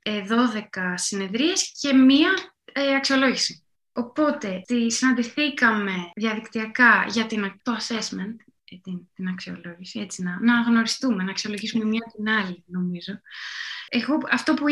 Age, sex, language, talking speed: 20-39, female, Greek, 120 wpm